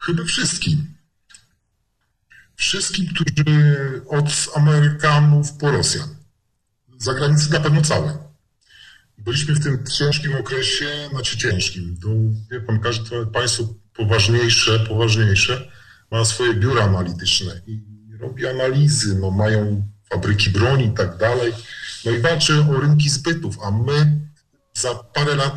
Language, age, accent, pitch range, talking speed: Polish, 40-59, native, 105-145 Hz, 120 wpm